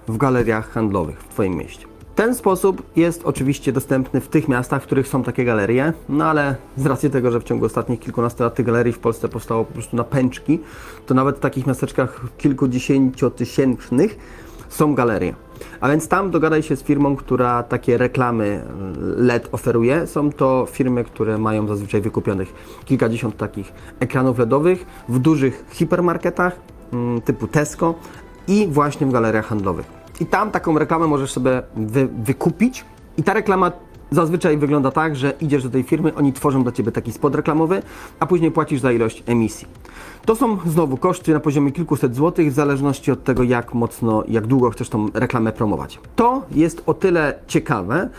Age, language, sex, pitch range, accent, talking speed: 30-49, Polish, male, 115-155 Hz, native, 170 wpm